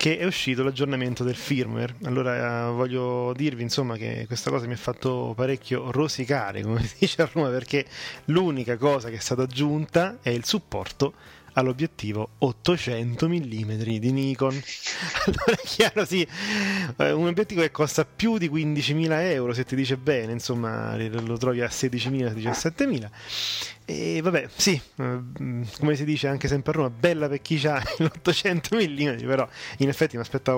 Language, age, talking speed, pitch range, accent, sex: Italian, 30-49, 165 wpm, 120-155 Hz, native, male